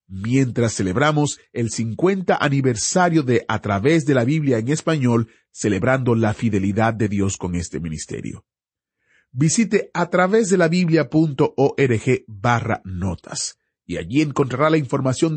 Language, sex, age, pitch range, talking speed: Spanish, male, 40-59, 115-165 Hz, 115 wpm